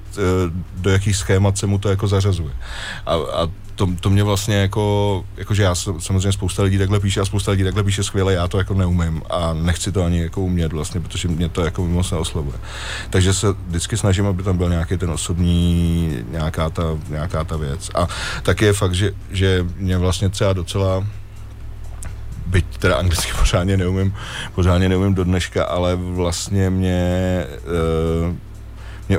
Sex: male